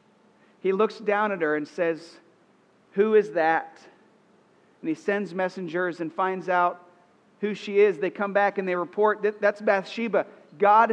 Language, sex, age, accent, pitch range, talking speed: English, male, 40-59, American, 175-215 Hz, 160 wpm